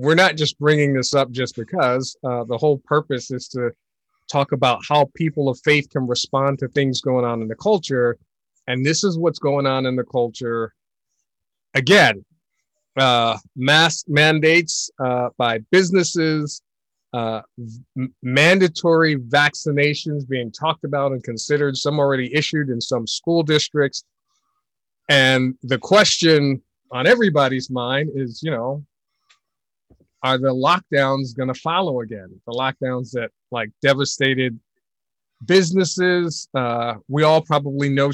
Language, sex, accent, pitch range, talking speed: English, male, American, 125-150 Hz, 140 wpm